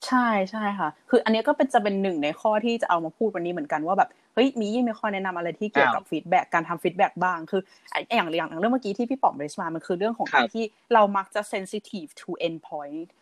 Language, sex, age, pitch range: Thai, female, 20-39, 180-255 Hz